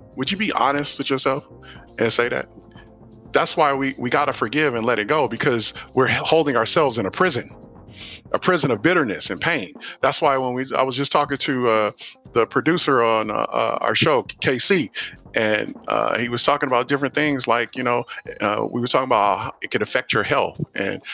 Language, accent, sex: English, American, male